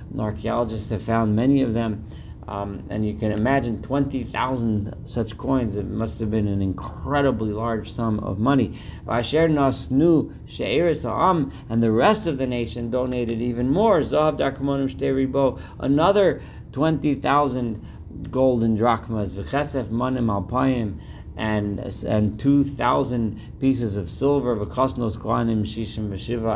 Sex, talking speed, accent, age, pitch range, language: male, 115 wpm, American, 50-69, 105-135 Hz, English